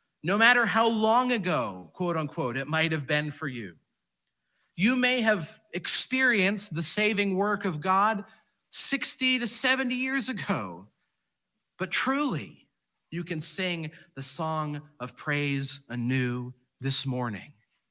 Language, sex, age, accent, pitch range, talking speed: English, male, 40-59, American, 130-185 Hz, 130 wpm